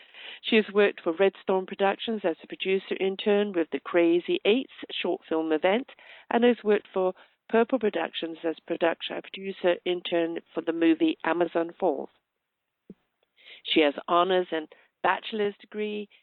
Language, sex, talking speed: English, female, 140 wpm